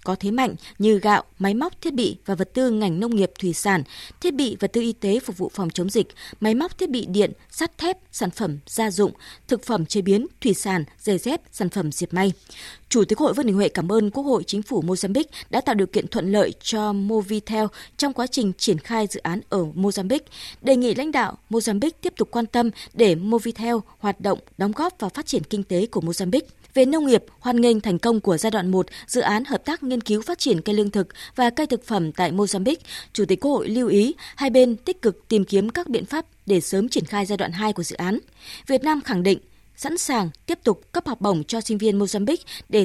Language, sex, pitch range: Vietnamese, female, 195-255 Hz